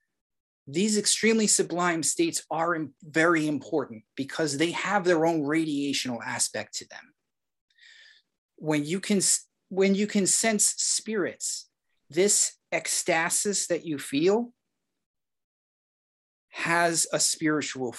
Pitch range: 145-200 Hz